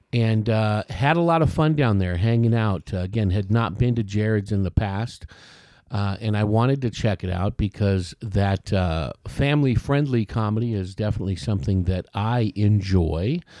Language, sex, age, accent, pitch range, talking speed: English, male, 50-69, American, 100-125 Hz, 175 wpm